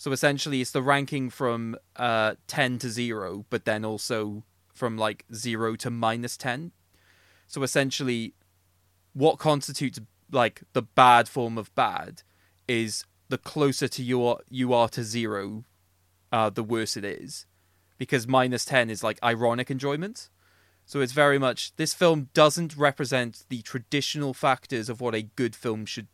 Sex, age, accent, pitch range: male, 20-39, British, 105-130 Hz